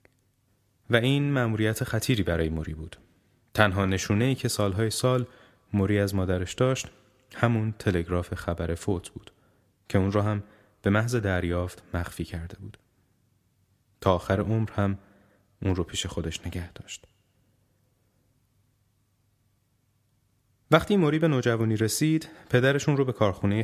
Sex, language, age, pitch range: male, Persian, 30-49, 95-120 Hz